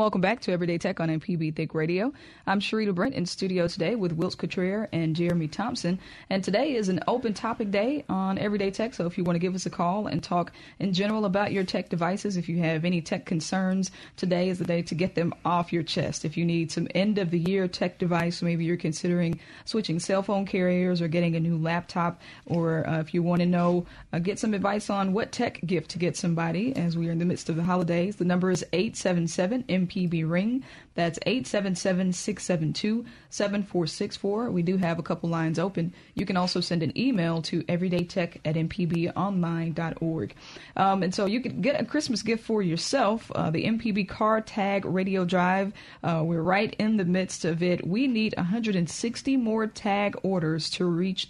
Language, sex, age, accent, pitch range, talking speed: English, female, 20-39, American, 170-200 Hz, 195 wpm